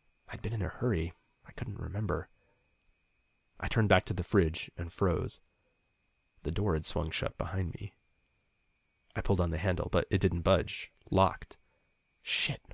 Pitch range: 90-110 Hz